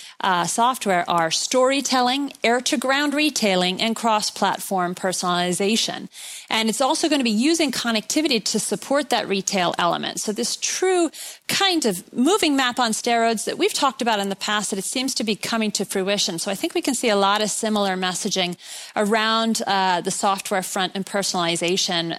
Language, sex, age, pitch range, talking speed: English, female, 30-49, 175-225 Hz, 175 wpm